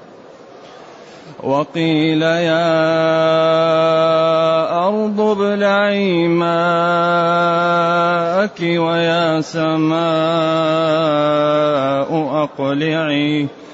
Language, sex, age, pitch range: Arabic, male, 30-49, 160-175 Hz